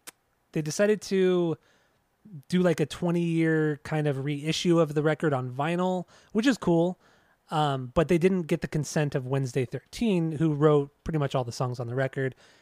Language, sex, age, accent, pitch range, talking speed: English, male, 20-39, American, 140-165 Hz, 180 wpm